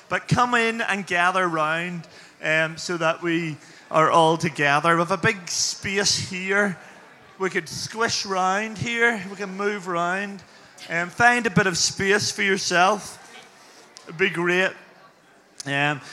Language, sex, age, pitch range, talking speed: English, male, 20-39, 160-195 Hz, 155 wpm